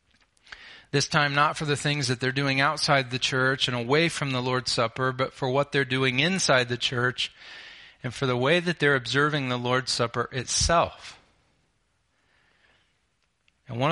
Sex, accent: male, American